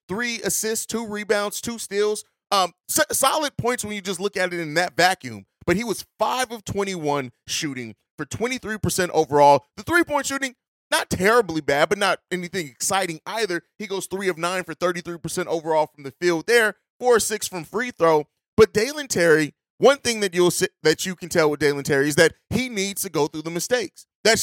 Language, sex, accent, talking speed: English, male, American, 205 wpm